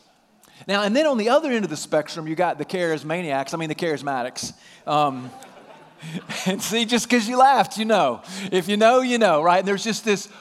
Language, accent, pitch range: English, American, 150-205 Hz